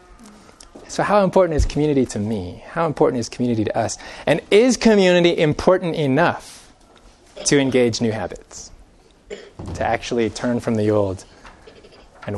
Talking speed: 140 wpm